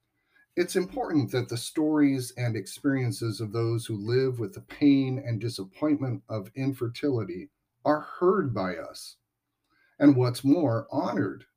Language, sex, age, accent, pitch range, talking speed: English, male, 50-69, American, 110-135 Hz, 135 wpm